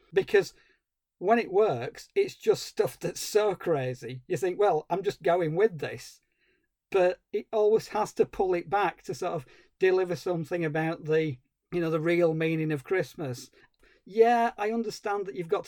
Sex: male